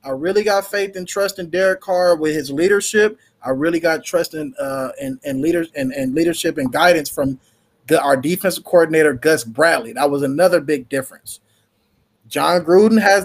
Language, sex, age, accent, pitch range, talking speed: English, male, 20-39, American, 160-235 Hz, 190 wpm